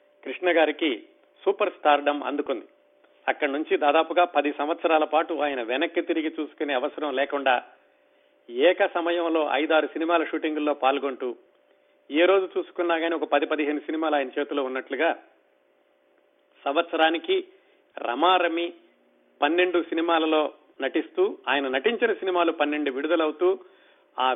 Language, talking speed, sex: Telugu, 110 wpm, male